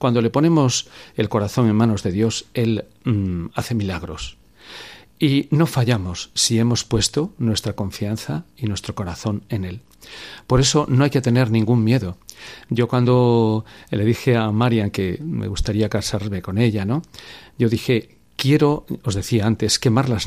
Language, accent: Spanish, Spanish